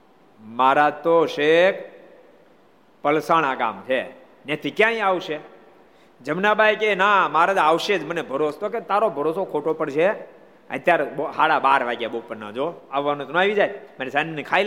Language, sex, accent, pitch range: Gujarati, male, native, 135-180 Hz